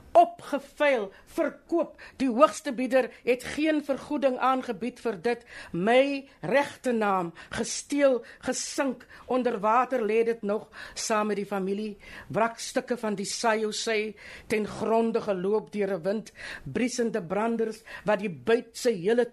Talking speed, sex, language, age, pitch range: 120 wpm, female, English, 60-79, 215-275 Hz